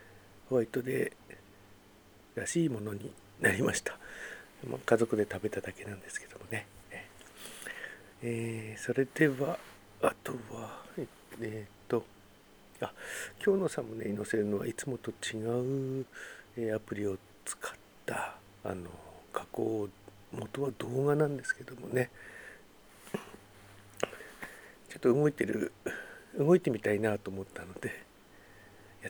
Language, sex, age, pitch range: Japanese, male, 60-79, 105-130 Hz